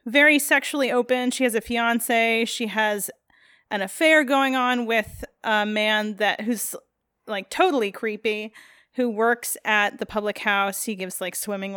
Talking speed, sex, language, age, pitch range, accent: 160 wpm, female, English, 30-49, 205-260 Hz, American